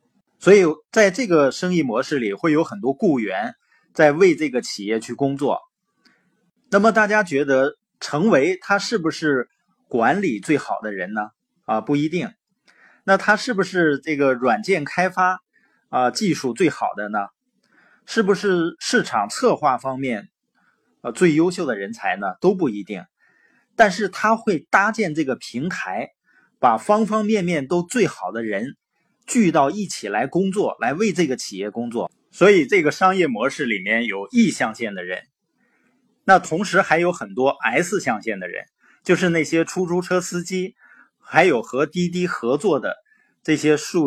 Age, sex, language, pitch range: 20-39, male, Chinese, 150-210 Hz